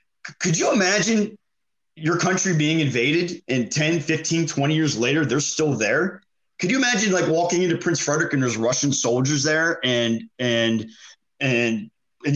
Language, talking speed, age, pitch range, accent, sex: English, 160 wpm, 30-49, 120-160 Hz, American, male